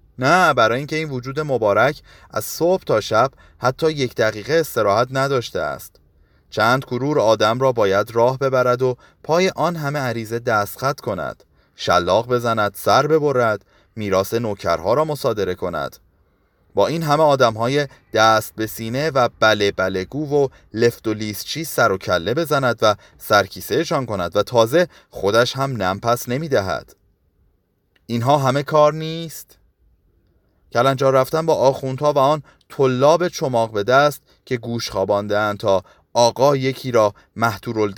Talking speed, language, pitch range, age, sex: 145 wpm, Persian, 105-140 Hz, 30-49, male